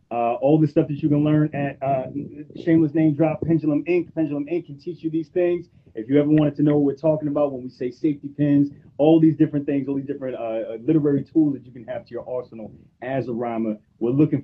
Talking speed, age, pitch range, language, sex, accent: 245 wpm, 30-49, 135-160 Hz, English, male, American